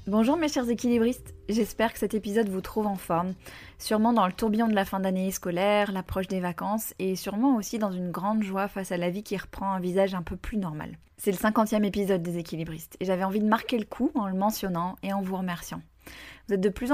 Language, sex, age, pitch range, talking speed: French, female, 20-39, 185-215 Hz, 235 wpm